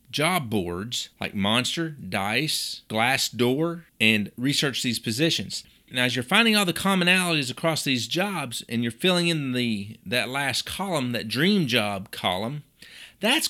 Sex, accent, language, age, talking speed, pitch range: male, American, English, 40-59, 145 wpm, 120-180 Hz